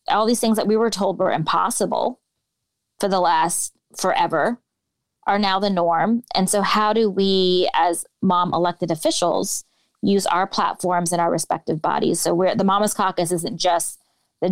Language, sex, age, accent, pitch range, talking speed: English, female, 20-39, American, 170-205 Hz, 170 wpm